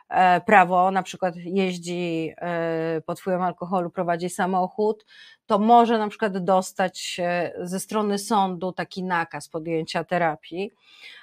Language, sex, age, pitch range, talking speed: Polish, female, 30-49, 180-215 Hz, 110 wpm